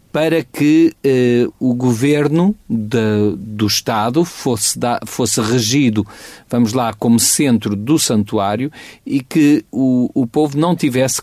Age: 40-59